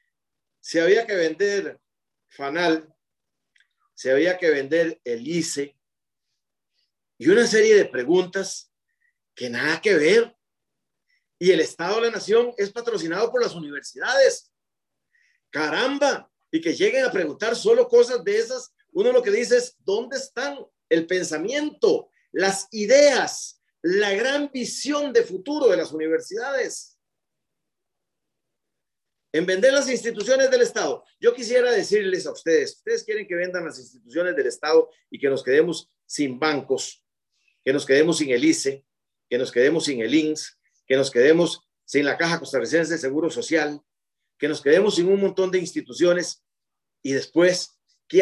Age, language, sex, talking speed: 40-59, Spanish, male, 145 wpm